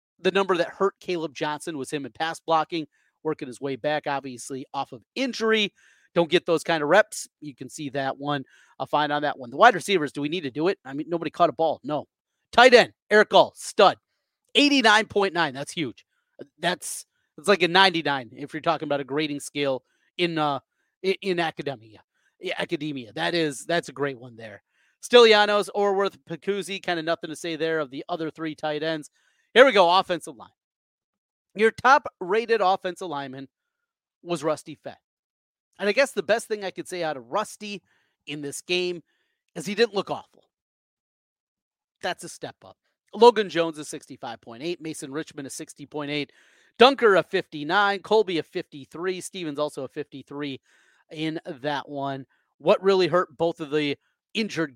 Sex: male